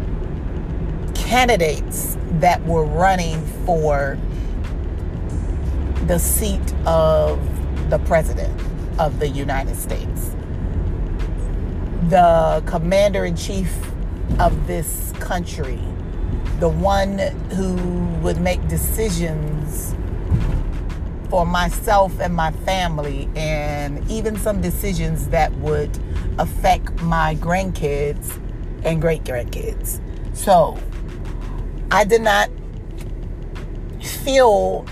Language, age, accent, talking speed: English, 40-59, American, 80 wpm